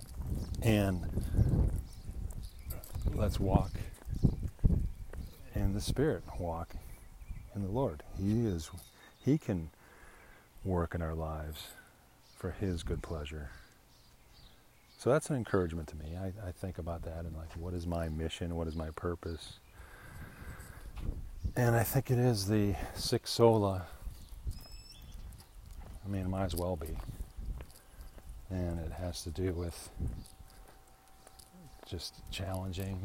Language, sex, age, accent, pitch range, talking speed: English, male, 40-59, American, 85-100 Hz, 120 wpm